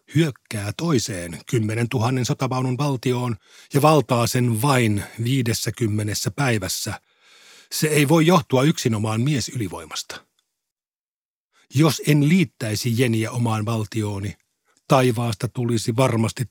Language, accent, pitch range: Finnish, native, 110-145 Hz